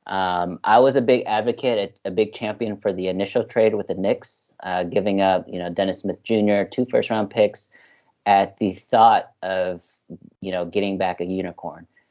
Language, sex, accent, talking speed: English, male, American, 195 wpm